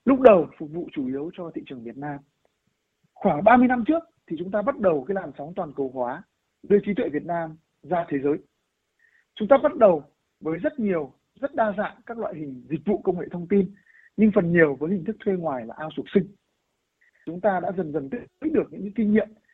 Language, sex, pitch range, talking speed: Vietnamese, male, 180-235 Hz, 230 wpm